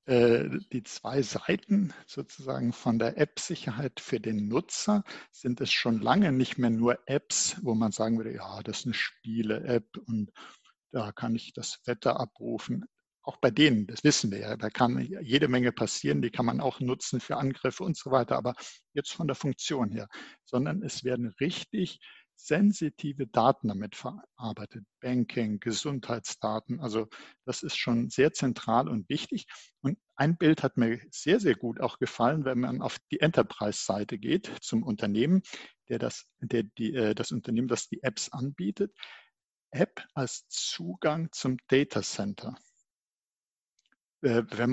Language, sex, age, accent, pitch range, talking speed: German, male, 60-79, German, 115-140 Hz, 150 wpm